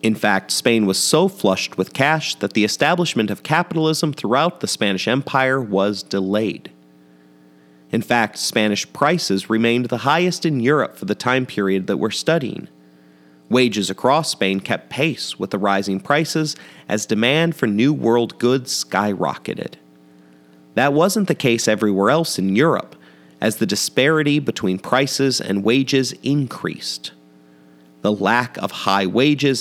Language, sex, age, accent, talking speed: English, male, 30-49, American, 145 wpm